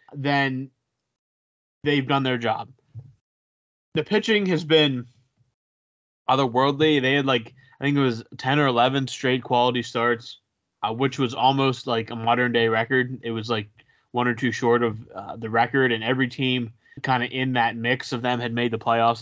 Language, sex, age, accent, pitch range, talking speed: English, male, 20-39, American, 115-135 Hz, 180 wpm